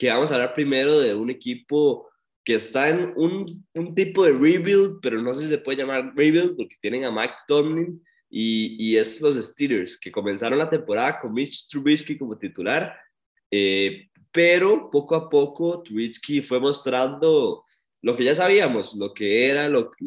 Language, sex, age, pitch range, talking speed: Spanish, male, 20-39, 110-150 Hz, 175 wpm